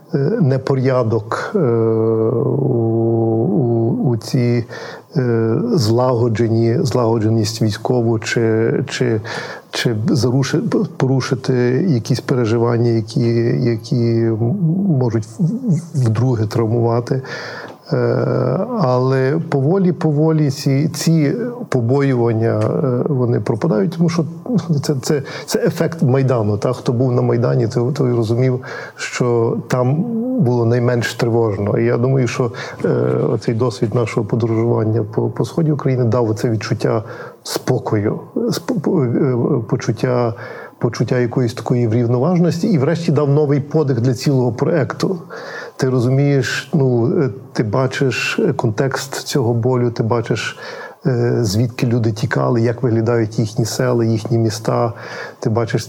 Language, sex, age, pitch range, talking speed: Ukrainian, male, 50-69, 115-140 Hz, 105 wpm